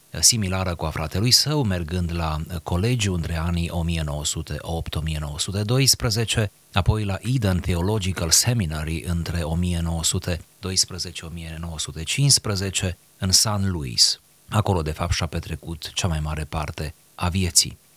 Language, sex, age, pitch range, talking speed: Romanian, male, 30-49, 85-105 Hz, 105 wpm